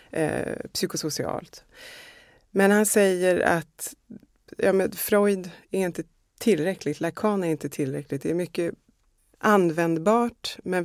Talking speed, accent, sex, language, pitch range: 115 wpm, native, female, Swedish, 150-205 Hz